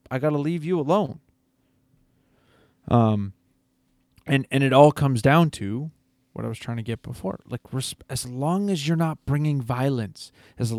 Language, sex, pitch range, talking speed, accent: English, male, 120-155 Hz, 170 wpm, American